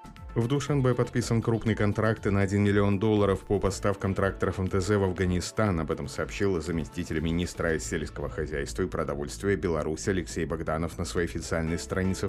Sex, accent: male, native